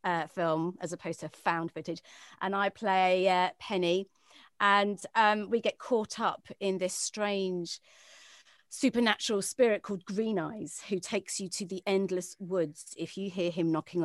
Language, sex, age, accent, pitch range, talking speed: English, female, 30-49, British, 180-220 Hz, 160 wpm